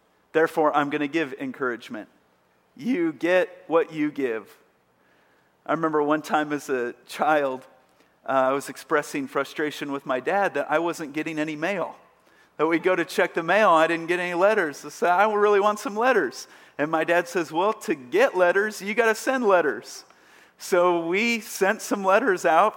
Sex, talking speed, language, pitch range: male, 180 wpm, English, 145-210 Hz